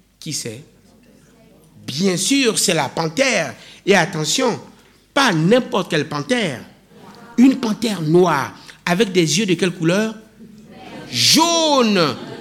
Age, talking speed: 60-79, 110 wpm